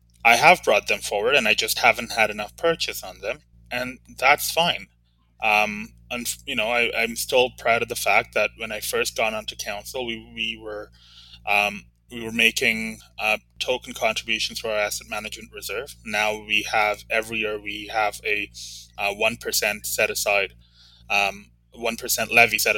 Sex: male